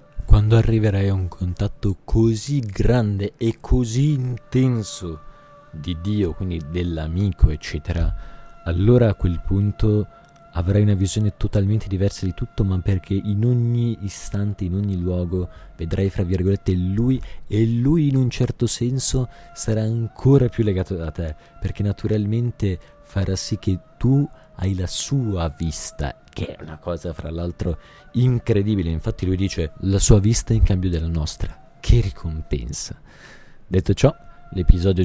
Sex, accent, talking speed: male, native, 140 wpm